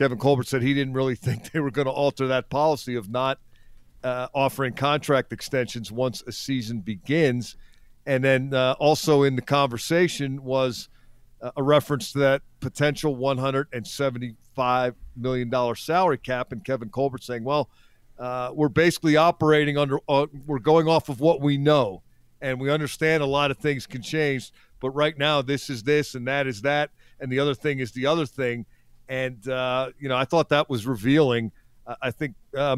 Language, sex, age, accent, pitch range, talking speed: English, male, 50-69, American, 125-145 Hz, 180 wpm